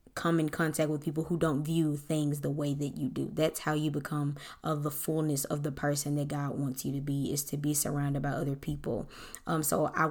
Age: 20-39